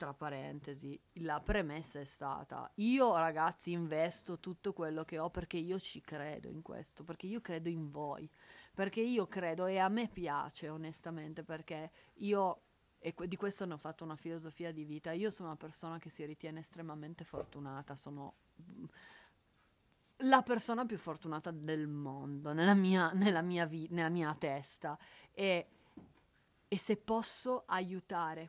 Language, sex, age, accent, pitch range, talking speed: Italian, female, 30-49, native, 160-190 Hz, 155 wpm